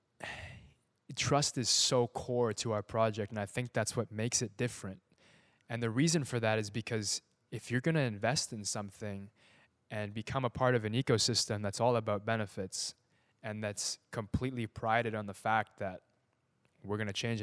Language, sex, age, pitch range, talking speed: English, male, 20-39, 105-120 Hz, 180 wpm